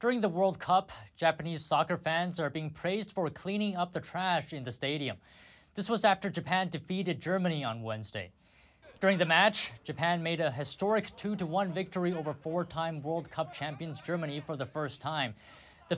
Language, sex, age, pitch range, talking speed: English, male, 20-39, 140-190 Hz, 175 wpm